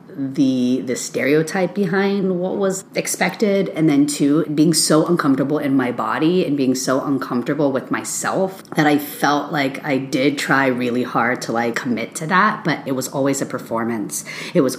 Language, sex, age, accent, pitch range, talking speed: English, female, 30-49, American, 135-200 Hz, 180 wpm